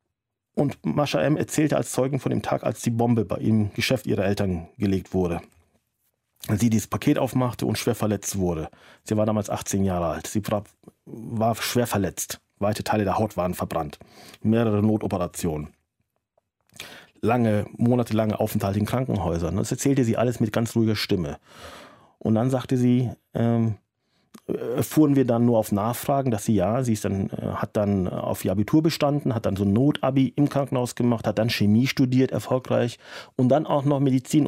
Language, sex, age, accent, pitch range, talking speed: German, male, 40-59, German, 105-130 Hz, 170 wpm